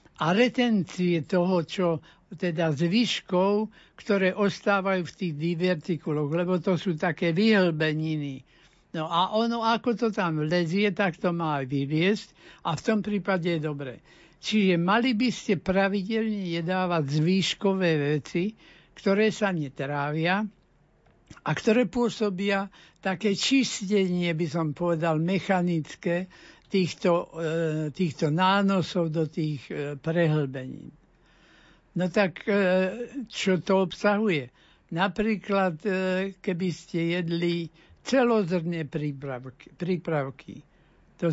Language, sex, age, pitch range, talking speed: Slovak, male, 60-79, 160-200 Hz, 105 wpm